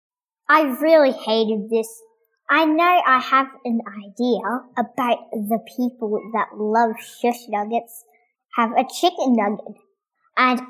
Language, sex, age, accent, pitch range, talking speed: English, male, 10-29, American, 220-310 Hz, 125 wpm